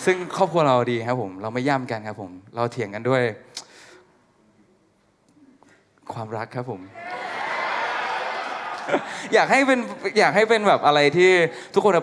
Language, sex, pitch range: Thai, male, 125-190 Hz